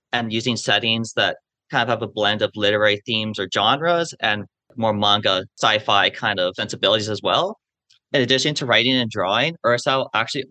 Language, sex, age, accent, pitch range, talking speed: English, male, 30-49, American, 110-130 Hz, 175 wpm